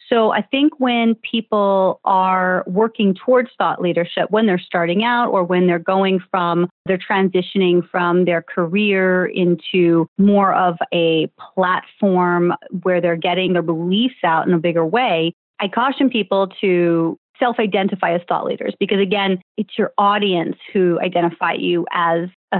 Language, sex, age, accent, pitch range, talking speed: English, female, 30-49, American, 175-210 Hz, 150 wpm